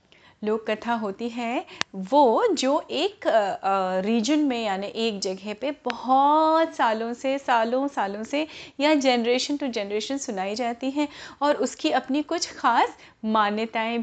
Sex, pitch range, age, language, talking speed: female, 215-285 Hz, 30-49, Hindi, 140 wpm